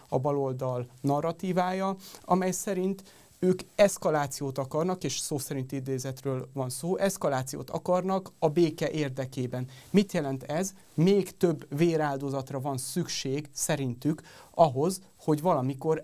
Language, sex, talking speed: Hungarian, male, 115 wpm